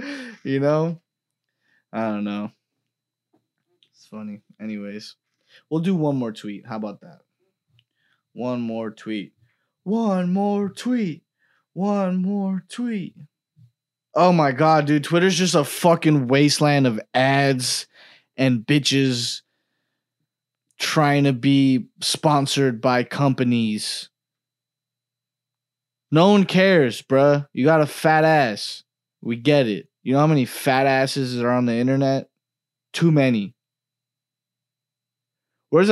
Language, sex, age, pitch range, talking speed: English, male, 20-39, 125-155 Hz, 115 wpm